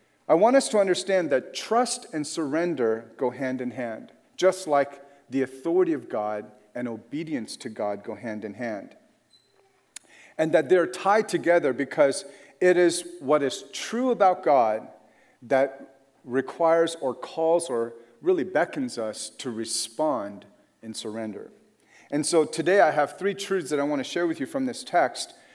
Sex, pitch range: male, 130-180 Hz